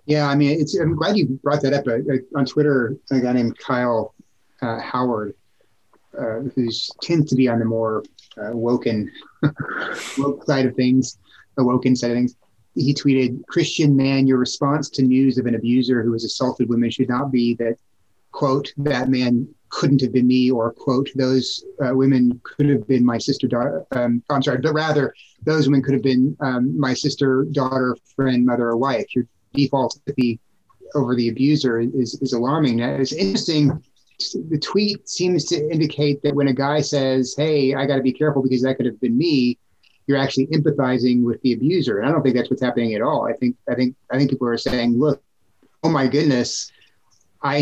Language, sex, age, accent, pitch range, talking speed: English, male, 30-49, American, 120-140 Hz, 195 wpm